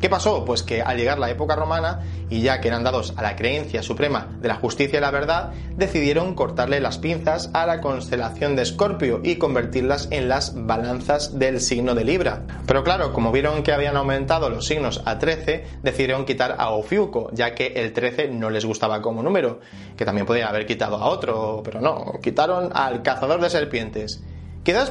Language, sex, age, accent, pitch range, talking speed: Spanish, male, 30-49, Spanish, 110-160 Hz, 195 wpm